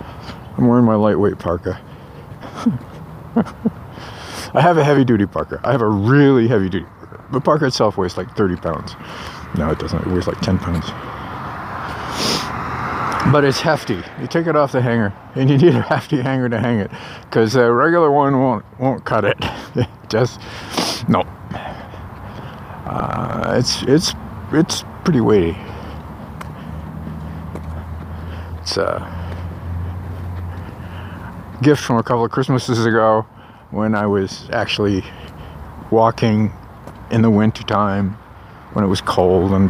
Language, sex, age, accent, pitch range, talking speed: English, male, 50-69, American, 95-130 Hz, 135 wpm